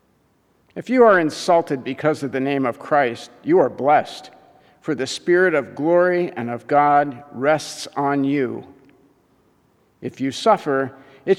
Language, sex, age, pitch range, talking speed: English, male, 50-69, 130-170 Hz, 150 wpm